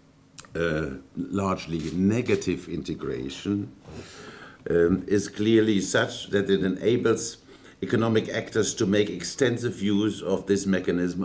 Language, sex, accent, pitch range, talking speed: English, male, German, 85-100 Hz, 105 wpm